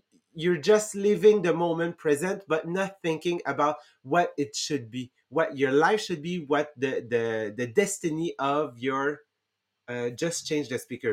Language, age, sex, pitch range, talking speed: English, 30-49, male, 150-205 Hz, 165 wpm